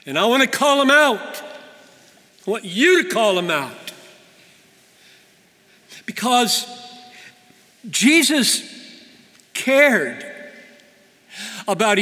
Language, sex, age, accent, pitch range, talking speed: English, male, 60-79, American, 210-245 Hz, 90 wpm